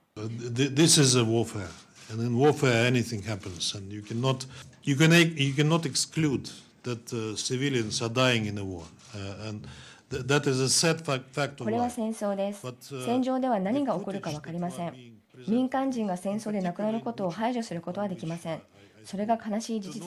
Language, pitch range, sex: Japanese, 160-225 Hz, male